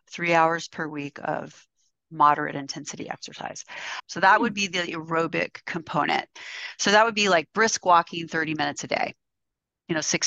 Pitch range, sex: 160-190 Hz, female